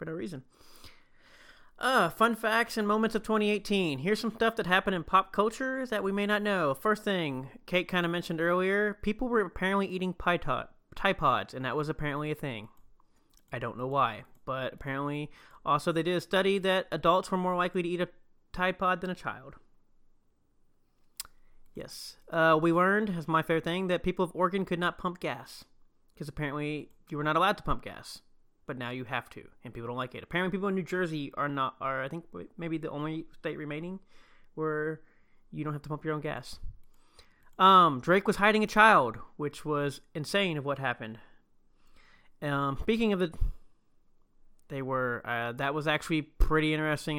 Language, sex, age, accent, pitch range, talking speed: English, male, 30-49, American, 145-190 Hz, 190 wpm